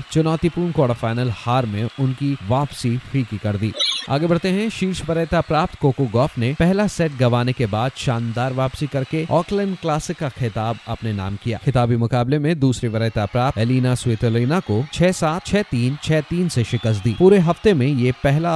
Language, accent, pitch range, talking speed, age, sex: Hindi, native, 115-155 Hz, 185 wpm, 30-49, male